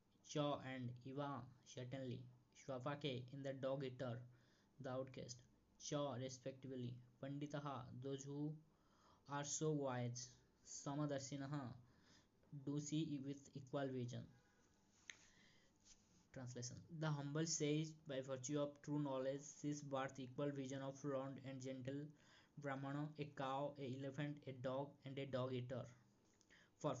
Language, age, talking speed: Hindi, 20-39, 135 wpm